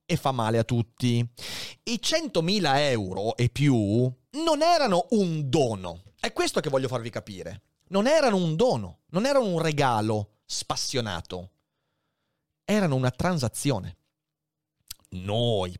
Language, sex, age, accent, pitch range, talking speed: Italian, male, 30-49, native, 120-195 Hz, 125 wpm